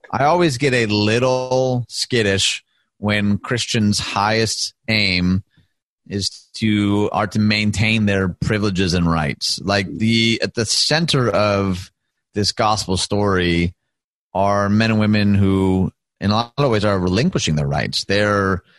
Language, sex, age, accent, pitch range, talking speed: English, male, 30-49, American, 95-115 Hz, 140 wpm